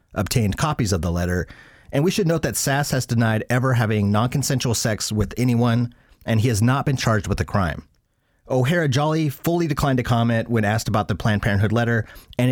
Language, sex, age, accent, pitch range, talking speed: English, male, 30-49, American, 100-125 Hz, 200 wpm